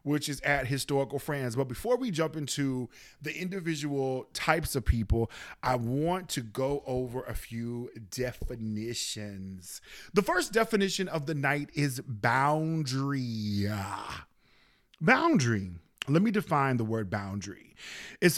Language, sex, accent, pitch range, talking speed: English, male, American, 120-160 Hz, 125 wpm